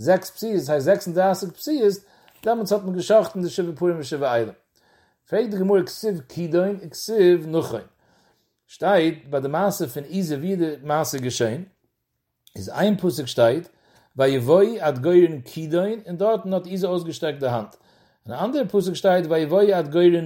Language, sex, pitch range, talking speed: English, male, 145-190 Hz, 115 wpm